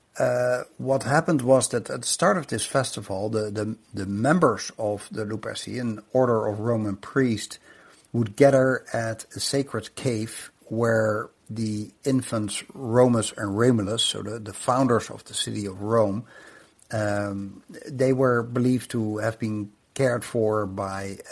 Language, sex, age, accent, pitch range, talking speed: English, male, 60-79, Dutch, 105-130 Hz, 150 wpm